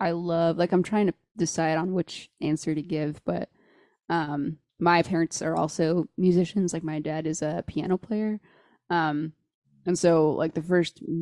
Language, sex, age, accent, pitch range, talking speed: English, female, 20-39, American, 160-180 Hz, 170 wpm